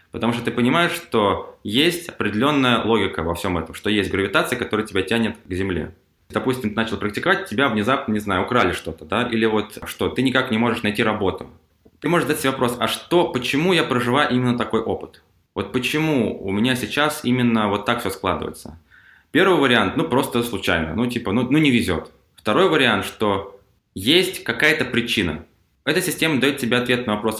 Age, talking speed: 20-39, 190 wpm